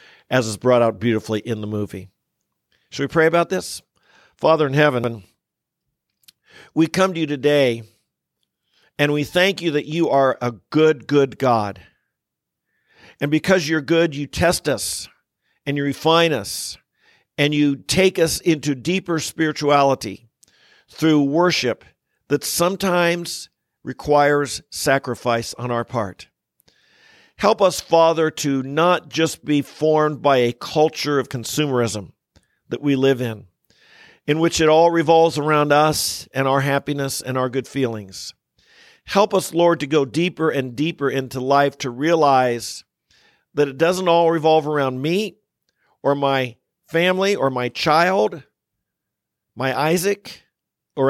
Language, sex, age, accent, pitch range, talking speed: English, male, 50-69, American, 130-165 Hz, 140 wpm